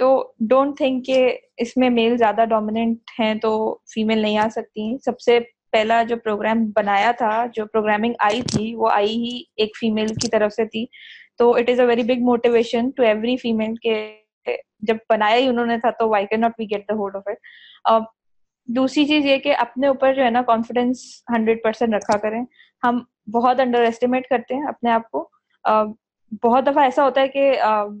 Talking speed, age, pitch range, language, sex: 160 wpm, 20-39, 225-255 Hz, Urdu, female